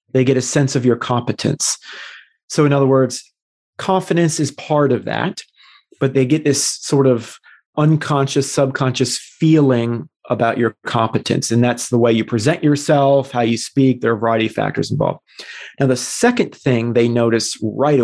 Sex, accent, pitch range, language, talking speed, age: male, American, 120-145 Hz, English, 175 wpm, 30-49